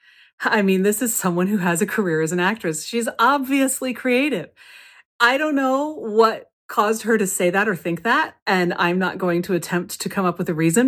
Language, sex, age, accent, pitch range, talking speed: English, female, 30-49, American, 175-230 Hz, 215 wpm